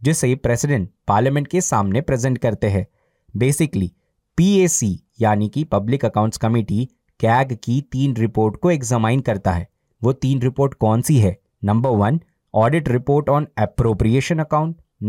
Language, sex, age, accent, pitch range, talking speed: Hindi, male, 20-39, native, 105-140 Hz, 120 wpm